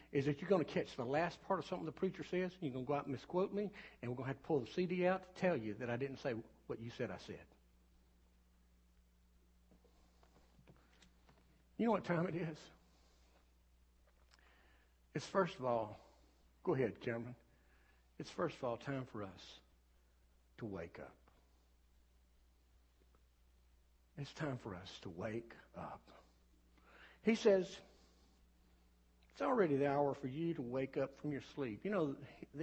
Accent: American